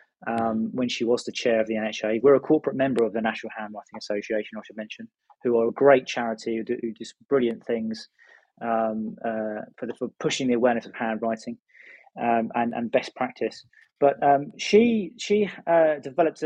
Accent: British